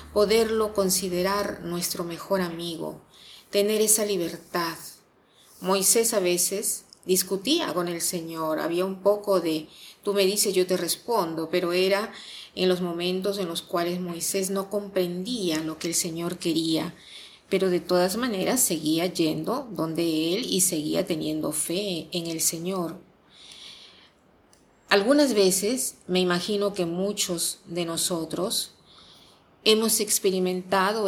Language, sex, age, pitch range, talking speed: Spanish, female, 40-59, 170-195 Hz, 125 wpm